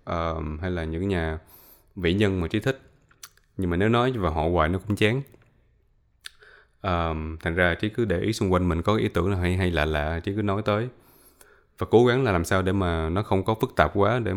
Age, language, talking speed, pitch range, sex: 20-39, Vietnamese, 240 wpm, 85-105 Hz, male